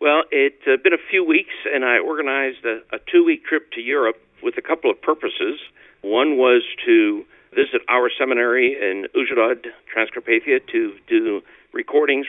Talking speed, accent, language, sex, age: 160 wpm, American, English, male, 60-79